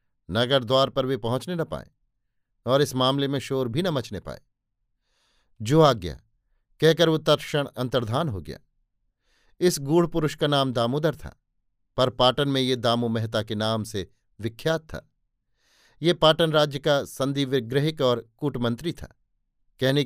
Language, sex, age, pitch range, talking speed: Hindi, male, 50-69, 120-150 Hz, 155 wpm